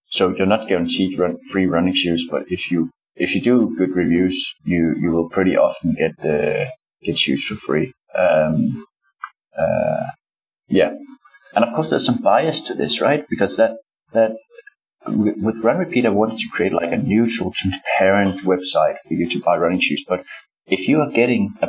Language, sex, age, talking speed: English, male, 30-49, 185 wpm